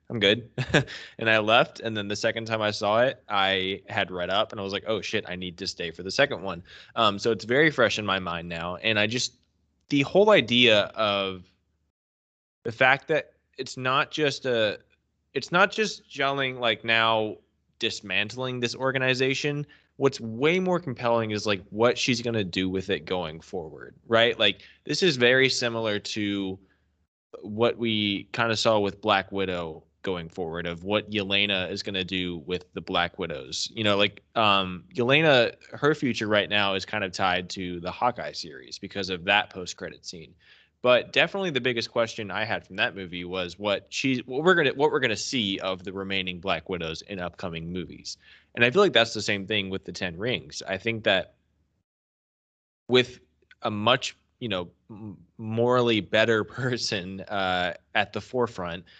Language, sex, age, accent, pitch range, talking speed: English, male, 20-39, American, 95-120 Hz, 190 wpm